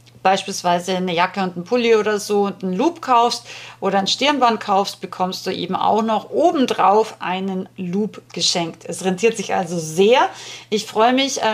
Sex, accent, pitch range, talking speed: female, German, 190-230 Hz, 170 wpm